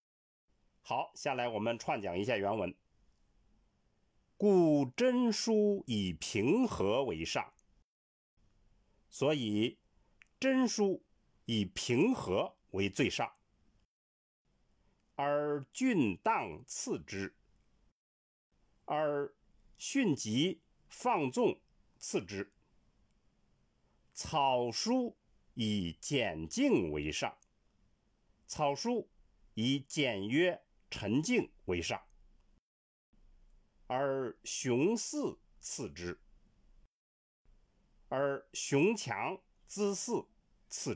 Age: 50-69